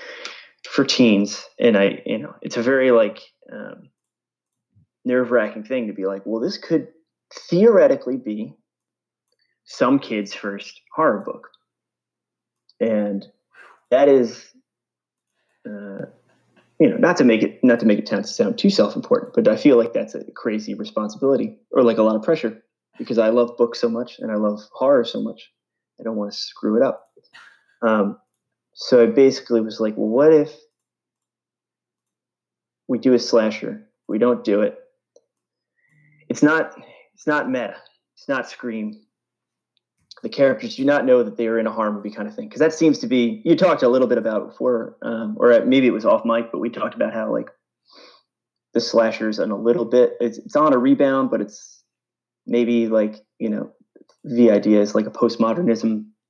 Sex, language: male, English